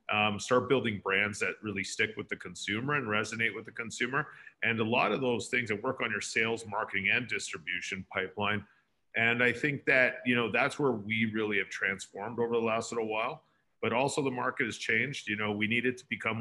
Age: 40-59